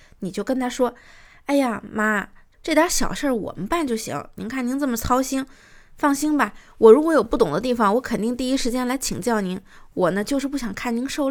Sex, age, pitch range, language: female, 20-39, 190-255 Hz, Chinese